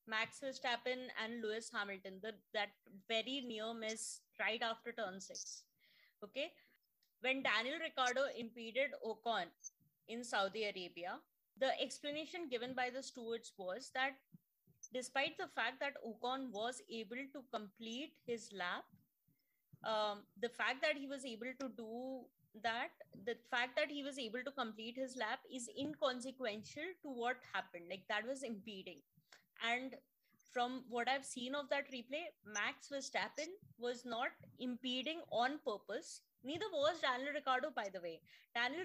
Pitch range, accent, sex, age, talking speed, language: 220-270 Hz, Indian, female, 20-39, 145 wpm, English